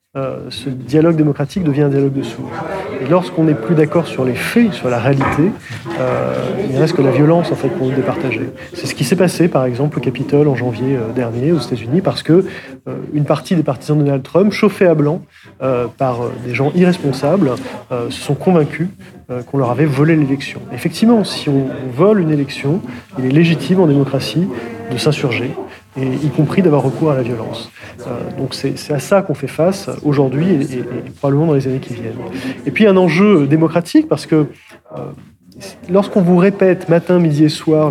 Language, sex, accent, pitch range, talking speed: French, male, French, 130-165 Hz, 200 wpm